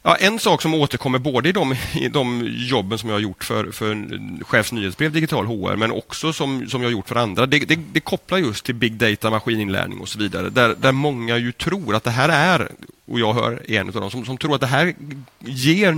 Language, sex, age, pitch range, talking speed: Swedish, male, 30-49, 105-130 Hz, 235 wpm